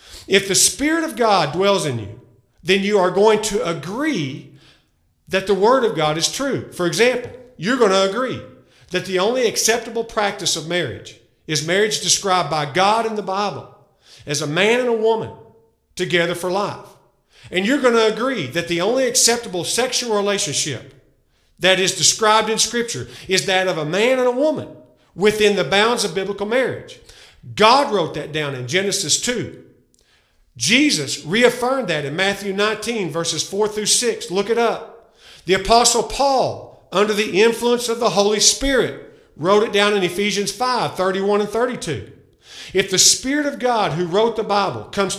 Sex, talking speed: male, 170 wpm